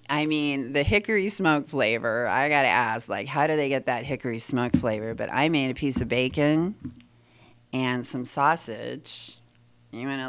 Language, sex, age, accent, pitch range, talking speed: English, female, 40-59, American, 120-155 Hz, 175 wpm